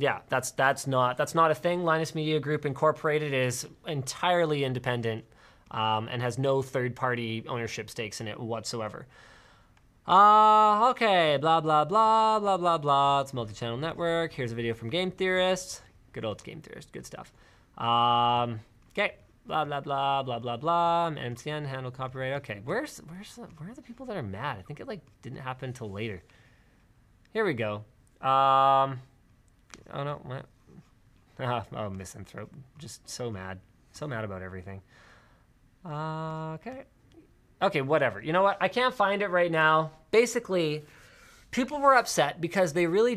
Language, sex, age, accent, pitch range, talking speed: English, male, 20-39, American, 120-165 Hz, 160 wpm